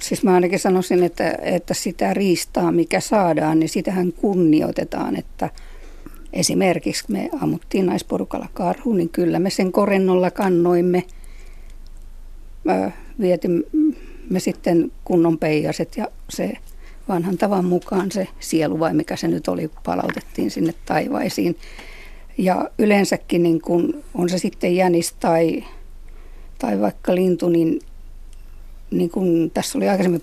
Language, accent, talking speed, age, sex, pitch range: Finnish, native, 120 wpm, 60-79, female, 160-195 Hz